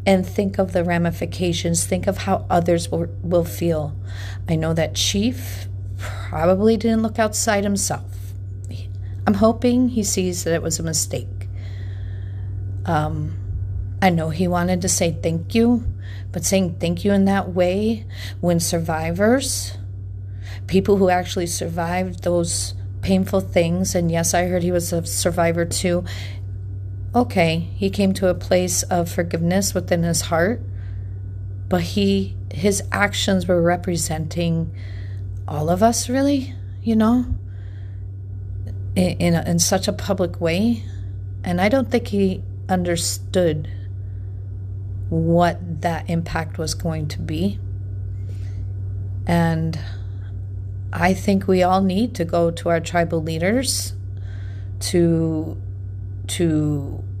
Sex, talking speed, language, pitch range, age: female, 130 wpm, English, 90-100 Hz, 40-59